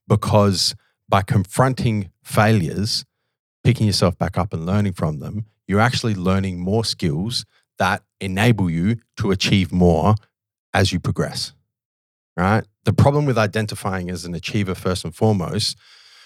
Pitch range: 95-125 Hz